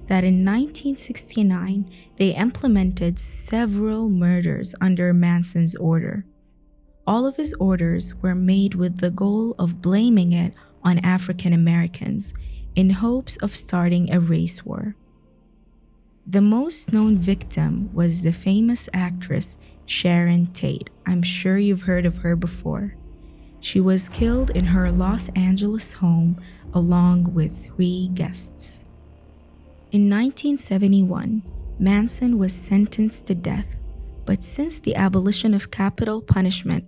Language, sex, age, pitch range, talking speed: Arabic, female, 20-39, 175-205 Hz, 120 wpm